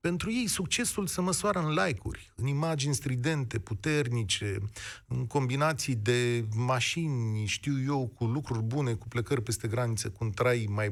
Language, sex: Romanian, male